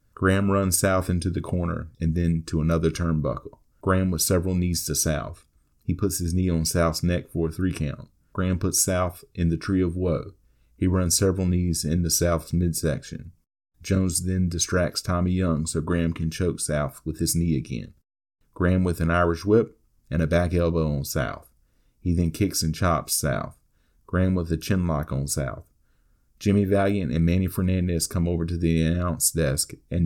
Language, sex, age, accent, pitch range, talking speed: English, male, 40-59, American, 80-90 Hz, 190 wpm